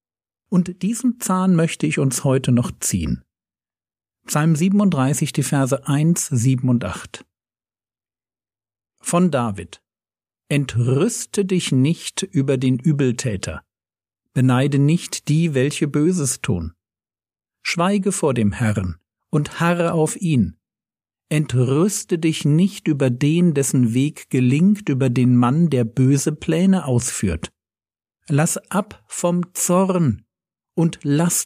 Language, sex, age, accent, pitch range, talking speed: German, male, 50-69, German, 120-170 Hz, 115 wpm